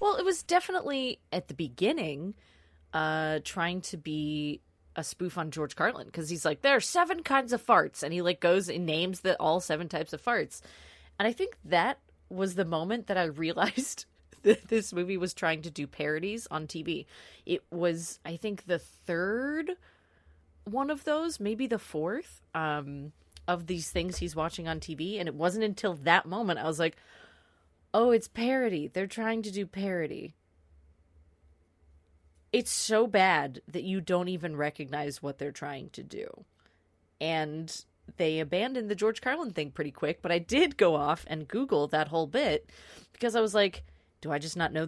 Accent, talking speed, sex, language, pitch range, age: American, 180 wpm, female, English, 150-210 Hz, 20-39